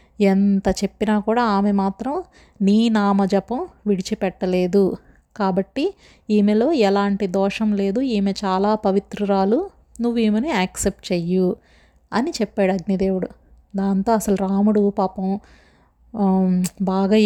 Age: 30-49